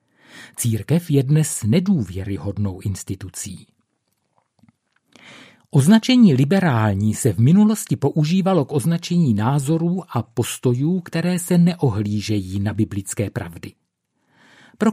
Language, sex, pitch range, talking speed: Czech, male, 110-165 Hz, 90 wpm